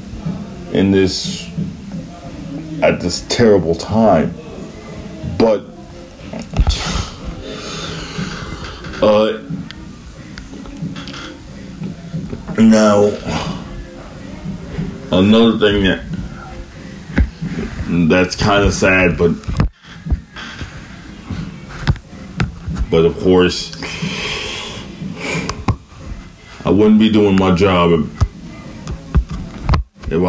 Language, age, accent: English, 40-59, American